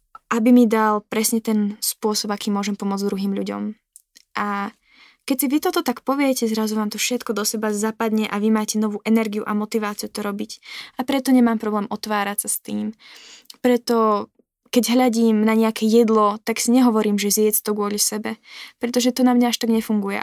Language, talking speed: Slovak, 185 wpm